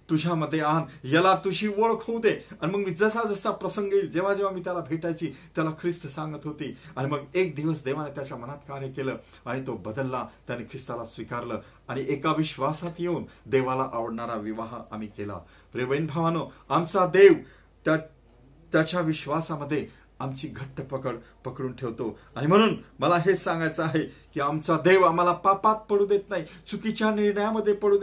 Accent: native